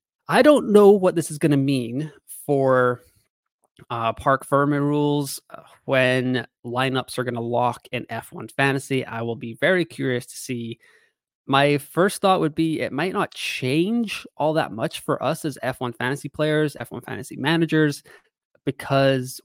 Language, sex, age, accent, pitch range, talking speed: English, male, 20-39, American, 120-150 Hz, 160 wpm